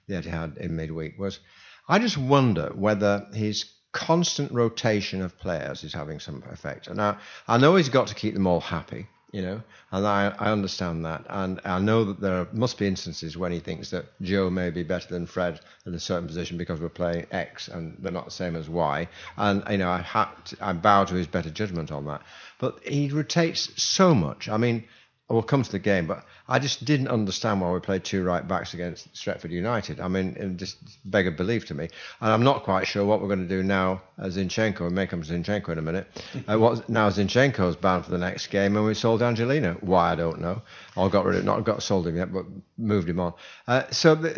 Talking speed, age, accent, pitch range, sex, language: 235 wpm, 60-79, British, 90-115 Hz, male, English